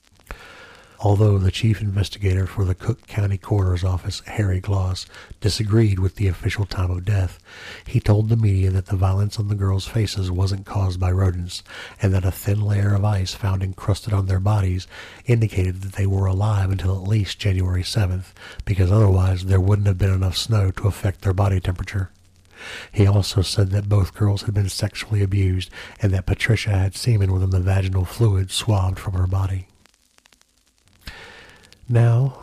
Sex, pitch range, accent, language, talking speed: male, 95-105 Hz, American, English, 170 wpm